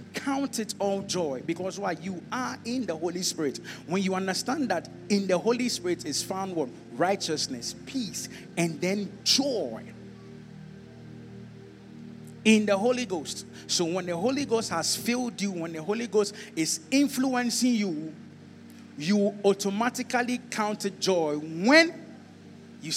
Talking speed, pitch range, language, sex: 140 wpm, 170-230 Hz, English, male